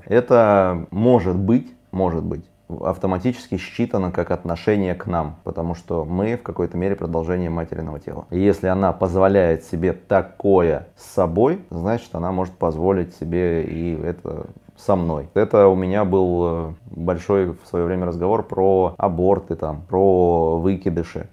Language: Russian